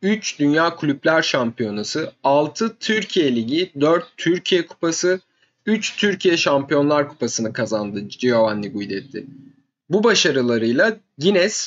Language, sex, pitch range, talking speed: Turkish, male, 125-195 Hz, 105 wpm